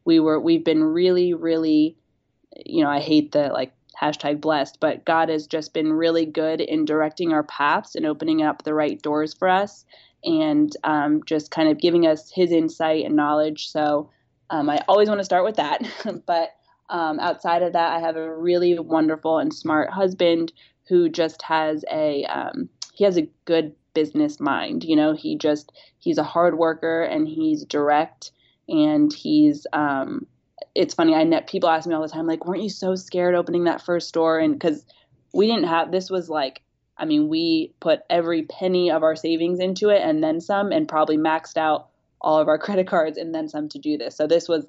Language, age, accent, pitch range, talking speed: English, 20-39, American, 155-190 Hz, 200 wpm